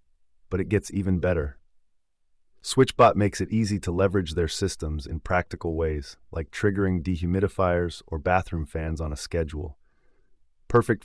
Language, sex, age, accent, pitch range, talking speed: English, male, 30-49, American, 80-95 Hz, 140 wpm